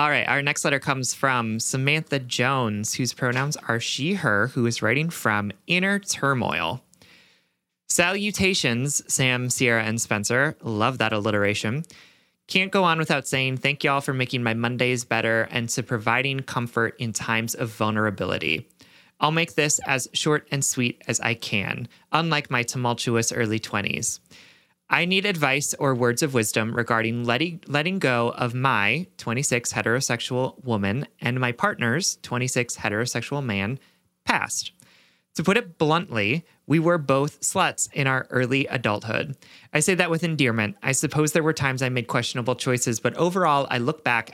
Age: 30-49